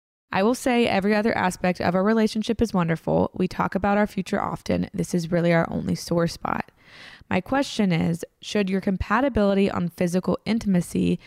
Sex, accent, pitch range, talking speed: female, American, 175-210 Hz, 175 wpm